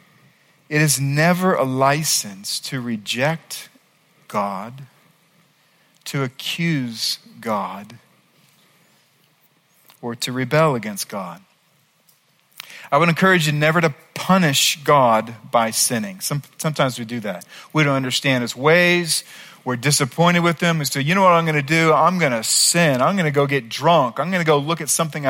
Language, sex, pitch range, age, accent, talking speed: English, male, 130-170 Hz, 40-59, American, 155 wpm